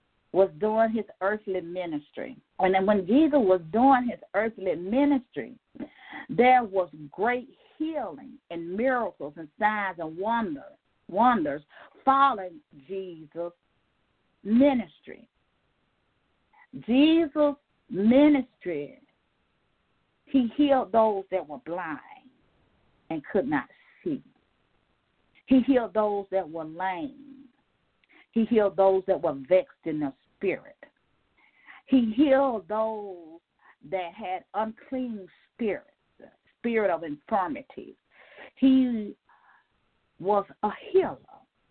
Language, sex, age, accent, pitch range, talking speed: English, female, 50-69, American, 190-265 Hz, 100 wpm